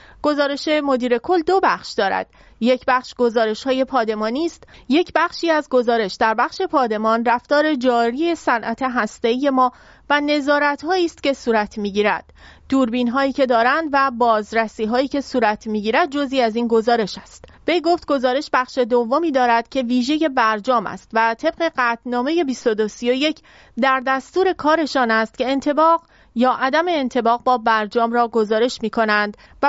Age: 30-49